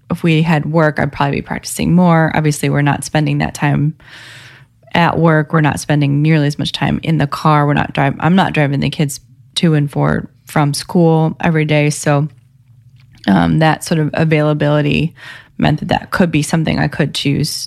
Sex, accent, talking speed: female, American, 195 wpm